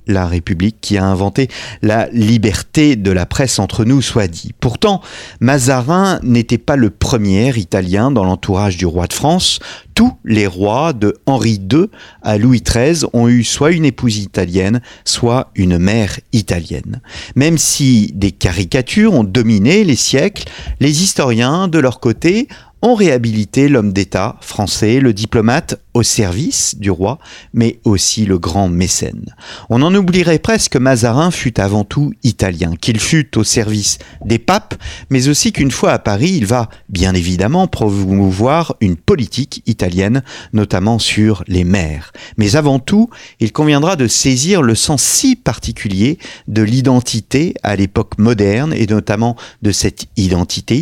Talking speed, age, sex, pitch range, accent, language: 155 wpm, 40-59, male, 100-135 Hz, French, French